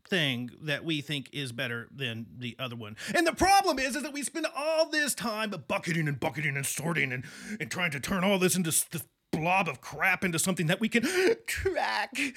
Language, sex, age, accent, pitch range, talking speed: English, male, 30-49, American, 150-245 Hz, 215 wpm